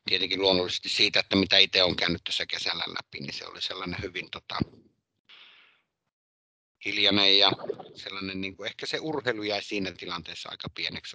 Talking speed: 155 wpm